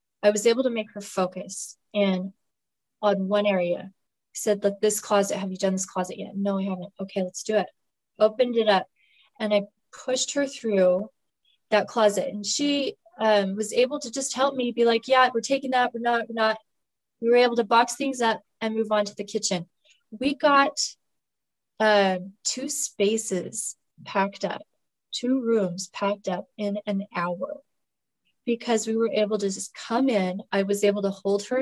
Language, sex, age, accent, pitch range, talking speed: English, female, 20-39, American, 200-255 Hz, 185 wpm